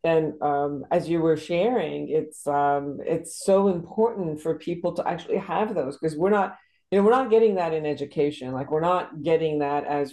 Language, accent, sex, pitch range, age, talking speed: English, American, female, 145-165 Hz, 50-69, 200 wpm